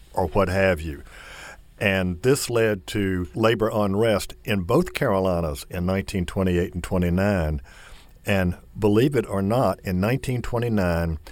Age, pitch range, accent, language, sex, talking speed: 60-79, 85-110 Hz, American, English, male, 125 wpm